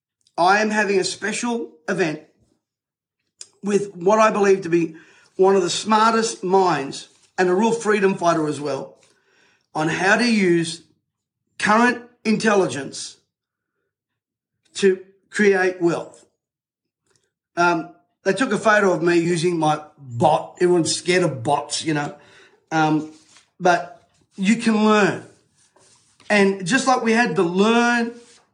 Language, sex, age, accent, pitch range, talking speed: English, male, 40-59, Australian, 185-225 Hz, 130 wpm